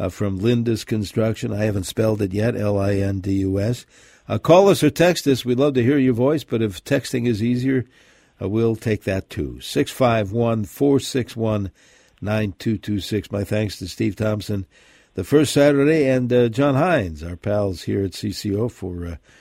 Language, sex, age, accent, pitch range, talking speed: English, male, 60-79, American, 100-120 Hz, 160 wpm